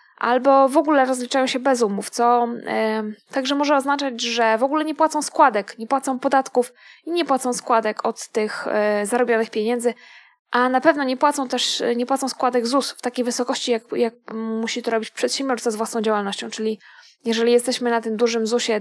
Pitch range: 225-290 Hz